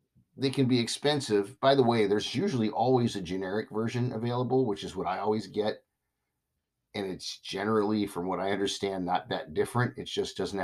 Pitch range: 105-135 Hz